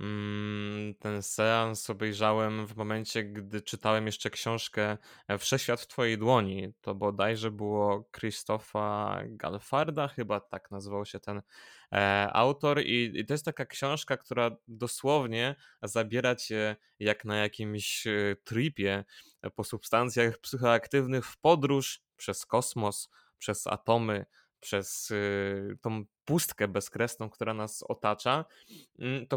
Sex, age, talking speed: male, 20-39, 110 wpm